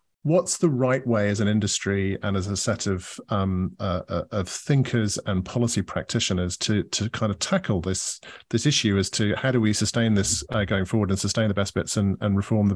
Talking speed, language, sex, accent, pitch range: 215 wpm, English, male, British, 105-135 Hz